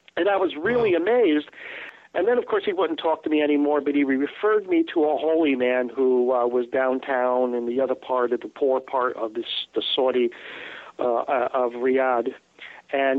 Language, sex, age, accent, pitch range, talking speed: English, male, 50-69, American, 130-160 Hz, 195 wpm